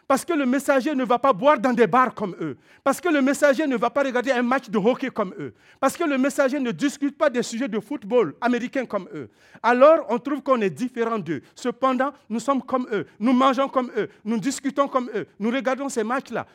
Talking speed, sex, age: 235 wpm, male, 50-69